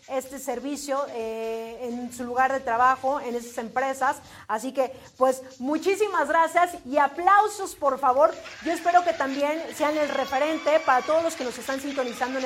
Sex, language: female, Spanish